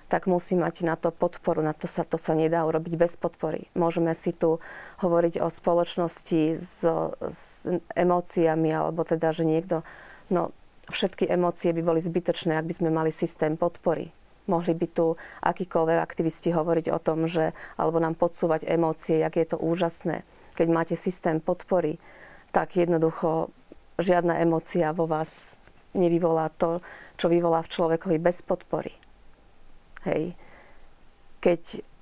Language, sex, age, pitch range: Slovak, female, 40-59, 160-175 Hz